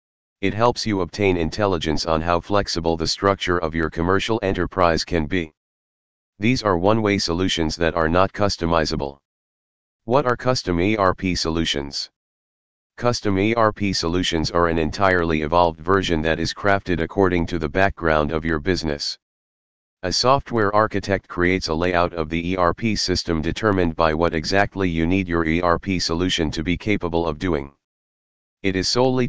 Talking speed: 150 wpm